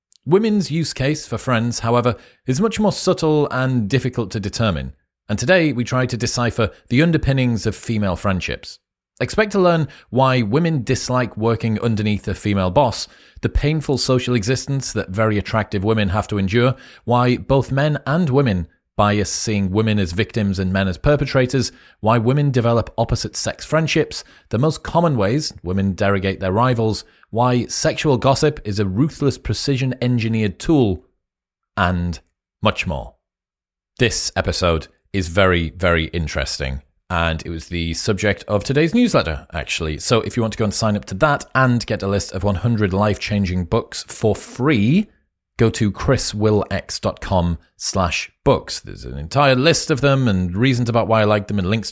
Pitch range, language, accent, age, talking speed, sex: 95-130 Hz, English, British, 30-49, 165 wpm, male